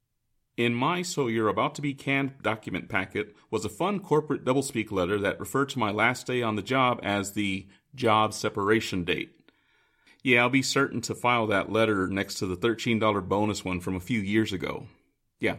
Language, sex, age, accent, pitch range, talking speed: English, male, 30-49, American, 100-140 Hz, 195 wpm